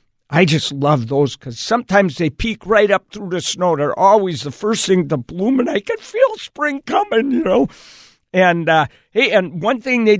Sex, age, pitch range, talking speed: male, 50-69, 140-210 Hz, 205 wpm